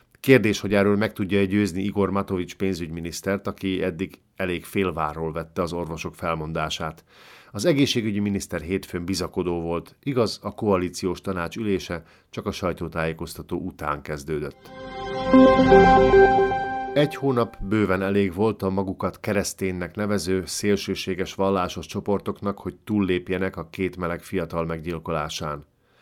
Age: 50-69